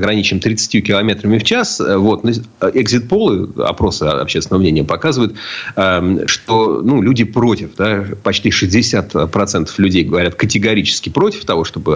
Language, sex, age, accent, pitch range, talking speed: Russian, male, 40-59, native, 85-110 Hz, 120 wpm